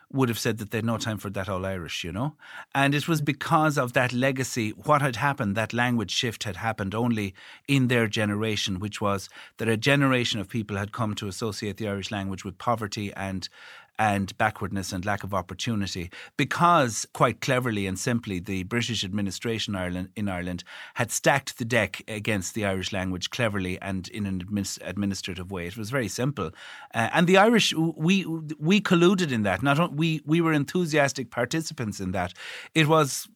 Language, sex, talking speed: English, male, 190 wpm